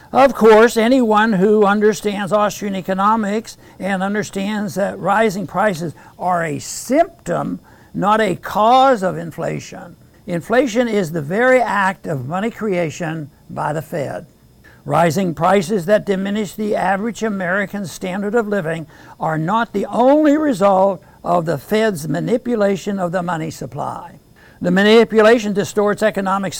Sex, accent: male, American